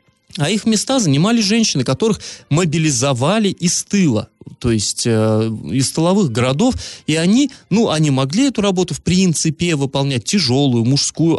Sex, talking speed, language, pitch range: male, 140 wpm, Russian, 120-165 Hz